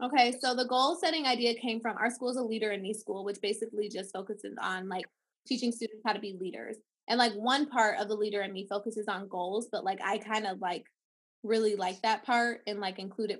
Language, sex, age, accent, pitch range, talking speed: English, female, 20-39, American, 210-250 Hz, 240 wpm